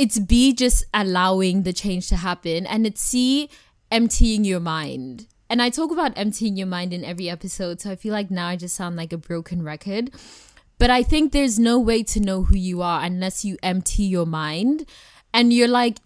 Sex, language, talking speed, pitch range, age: female, English, 205 wpm, 175-225 Hz, 20-39